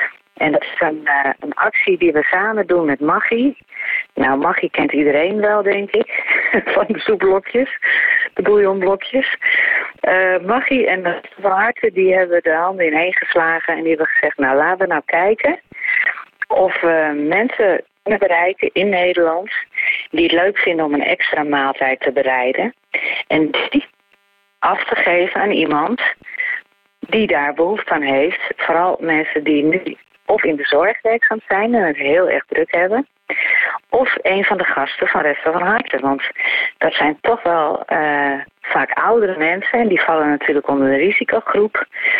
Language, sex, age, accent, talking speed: Dutch, female, 40-59, Dutch, 165 wpm